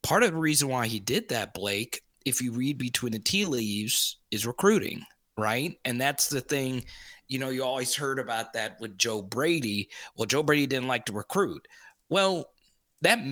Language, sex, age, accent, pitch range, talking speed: English, male, 30-49, American, 115-160 Hz, 190 wpm